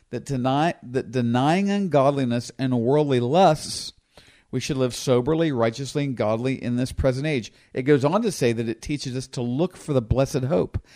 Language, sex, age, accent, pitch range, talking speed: English, male, 50-69, American, 115-150 Hz, 185 wpm